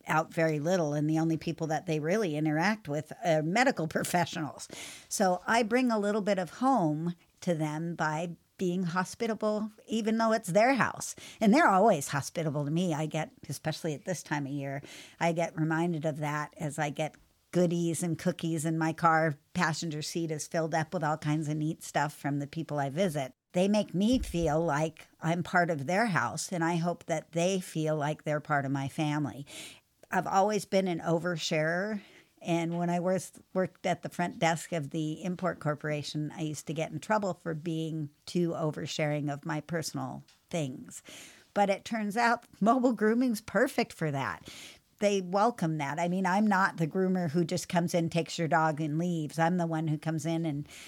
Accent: American